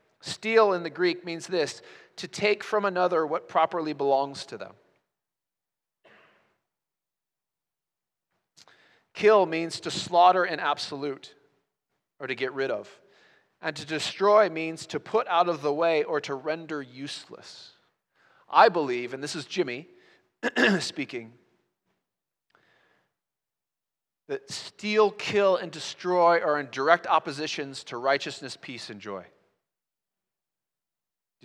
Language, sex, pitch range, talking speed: English, male, 150-190 Hz, 120 wpm